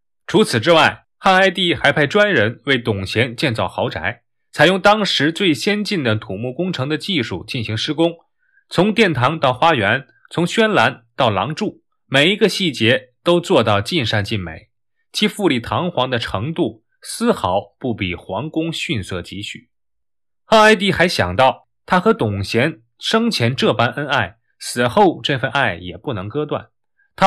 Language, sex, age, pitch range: Chinese, male, 20-39, 110-180 Hz